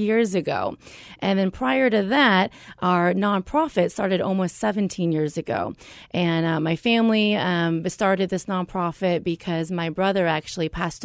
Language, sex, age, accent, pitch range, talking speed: English, female, 30-49, American, 180-235 Hz, 145 wpm